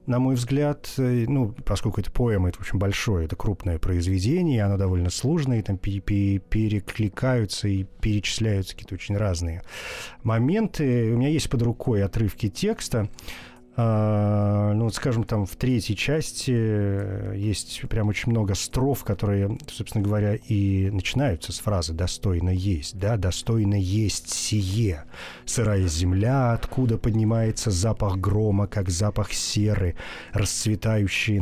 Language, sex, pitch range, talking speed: Russian, male, 100-120 Hz, 125 wpm